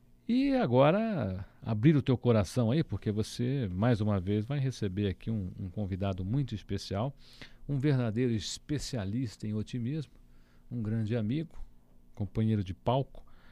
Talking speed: 140 wpm